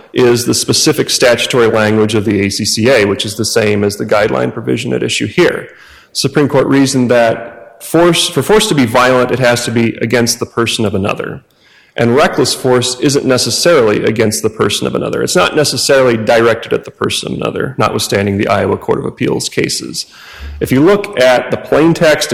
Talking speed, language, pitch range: 190 wpm, English, 115-140 Hz